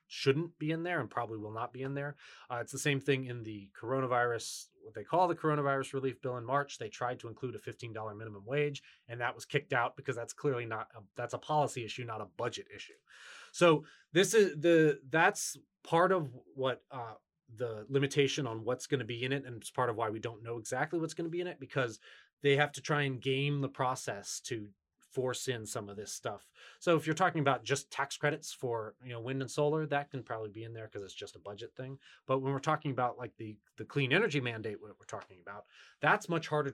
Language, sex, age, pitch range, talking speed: English, male, 20-39, 120-150 Hz, 240 wpm